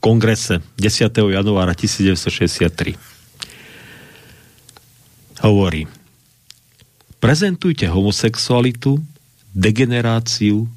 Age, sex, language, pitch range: 50-69, male, Slovak, 95-125 Hz